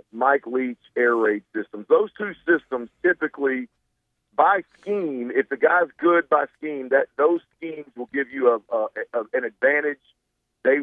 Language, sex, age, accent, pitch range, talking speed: English, male, 50-69, American, 125-165 Hz, 160 wpm